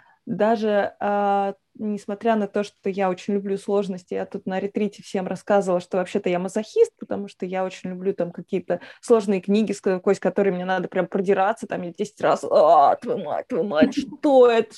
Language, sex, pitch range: Russian, female, 195-240 Hz